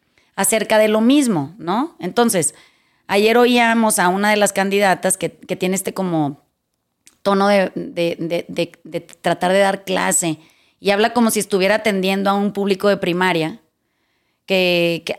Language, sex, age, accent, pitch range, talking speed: Spanish, female, 30-49, Mexican, 185-220 Hz, 160 wpm